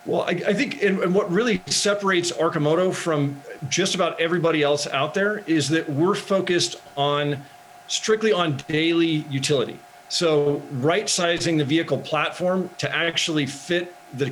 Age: 40-59